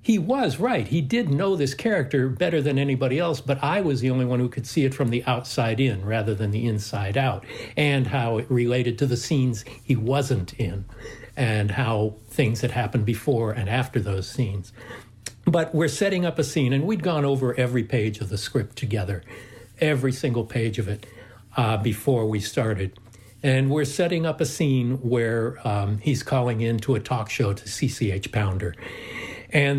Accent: American